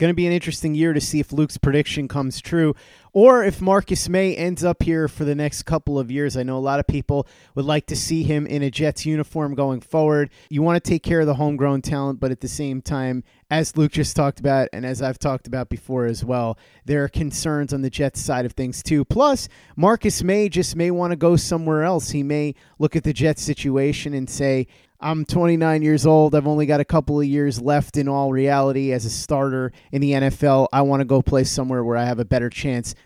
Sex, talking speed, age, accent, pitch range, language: male, 240 wpm, 30-49, American, 130-155 Hz, English